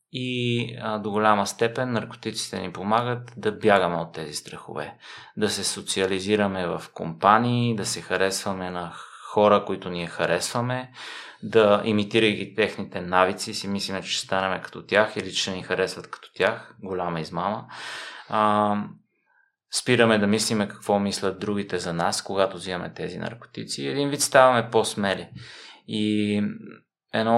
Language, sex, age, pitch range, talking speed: Bulgarian, male, 20-39, 100-115 Hz, 145 wpm